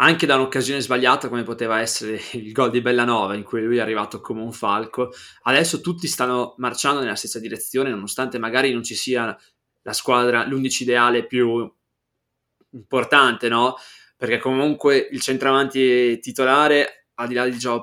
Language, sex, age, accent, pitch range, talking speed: Italian, male, 20-39, native, 115-130 Hz, 160 wpm